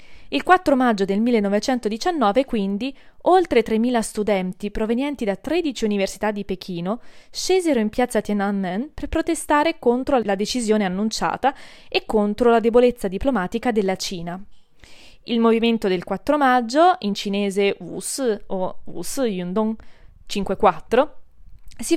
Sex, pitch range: female, 195-245 Hz